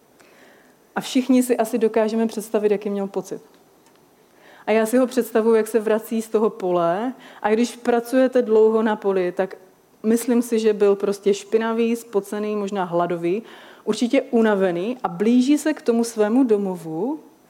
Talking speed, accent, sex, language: 155 wpm, native, female, Czech